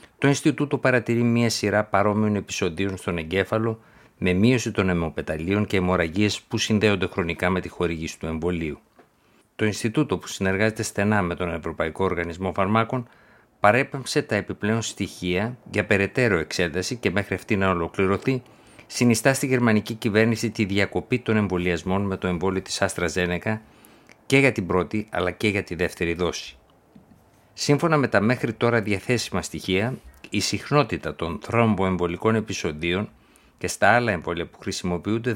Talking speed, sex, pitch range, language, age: 145 wpm, male, 90-115 Hz, Greek, 50-69